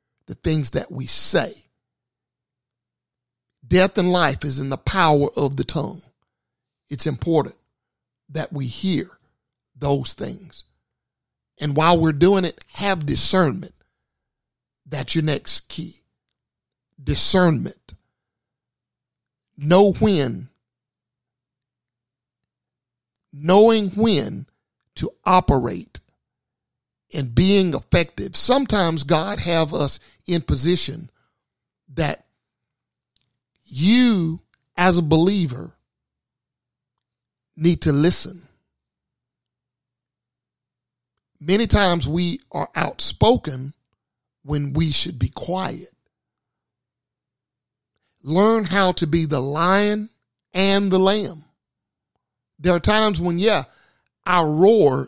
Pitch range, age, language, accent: 125-180 Hz, 50-69, English, American